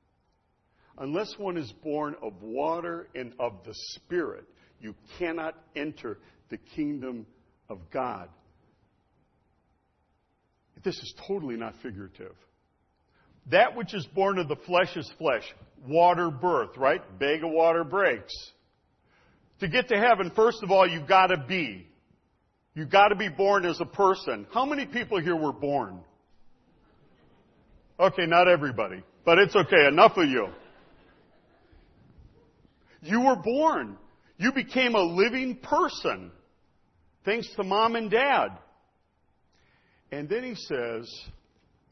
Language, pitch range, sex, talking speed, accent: English, 145-205 Hz, male, 125 wpm, American